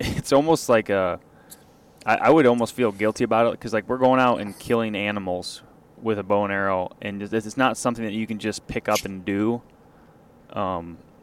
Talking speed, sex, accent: 215 wpm, male, American